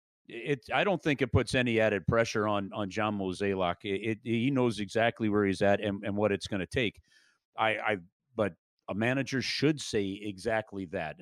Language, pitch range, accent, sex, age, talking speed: English, 105-135 Hz, American, male, 40-59, 200 wpm